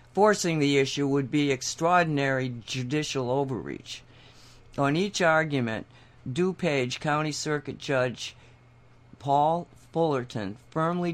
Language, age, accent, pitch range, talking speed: English, 60-79, American, 125-155 Hz, 95 wpm